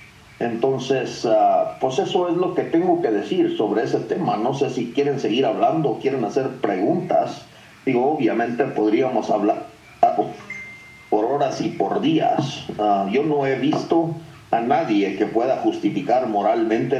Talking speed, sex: 140 wpm, male